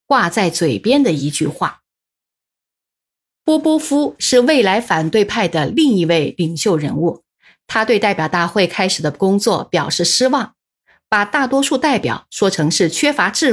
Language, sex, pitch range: Chinese, female, 175-265 Hz